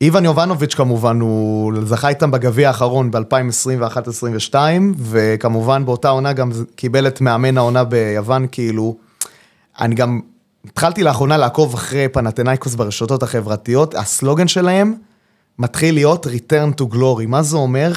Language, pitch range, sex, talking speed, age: Hebrew, 120-150 Hz, male, 125 wpm, 30-49